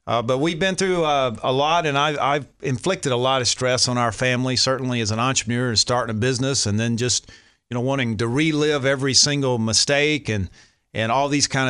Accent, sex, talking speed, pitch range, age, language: American, male, 220 wpm, 115-145 Hz, 40-59, English